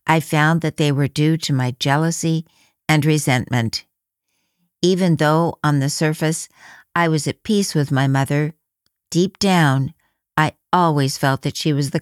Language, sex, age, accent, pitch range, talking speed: English, female, 60-79, American, 135-175 Hz, 160 wpm